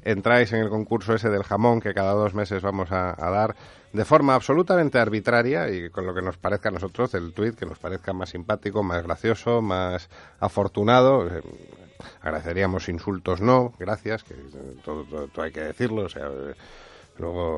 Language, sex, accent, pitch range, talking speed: Spanish, male, Spanish, 90-115 Hz, 185 wpm